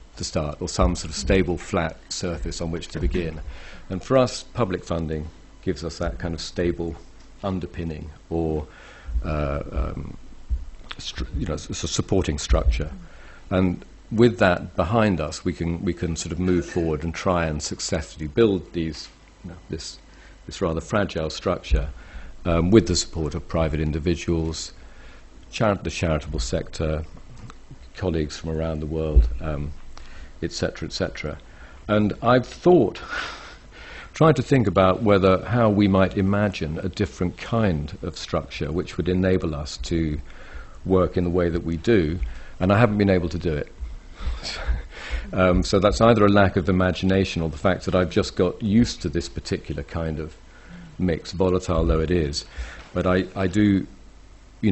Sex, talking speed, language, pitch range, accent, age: male, 160 wpm, English, 80-95 Hz, British, 50-69